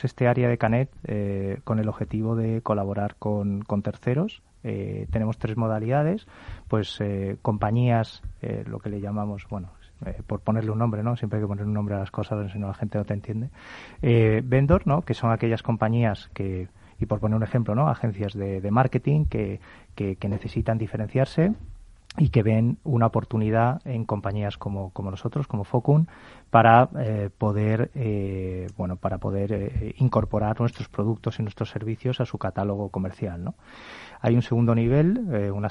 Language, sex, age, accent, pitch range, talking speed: Spanish, male, 30-49, Spanish, 100-120 Hz, 180 wpm